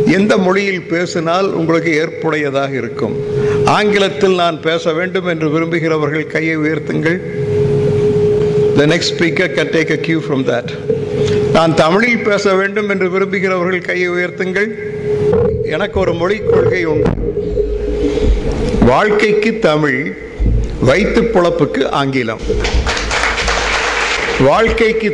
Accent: native